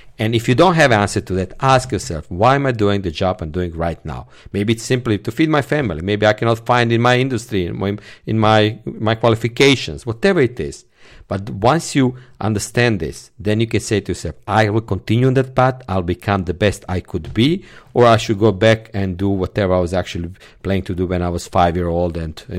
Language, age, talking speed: English, 50-69, 240 wpm